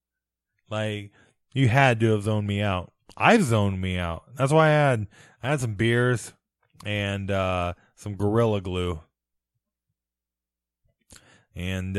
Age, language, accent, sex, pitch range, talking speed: 20-39, English, American, male, 85-120 Hz, 130 wpm